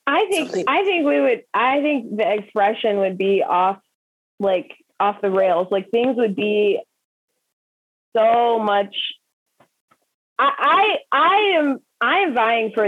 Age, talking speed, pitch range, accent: 20-39, 145 wpm, 210-265 Hz, American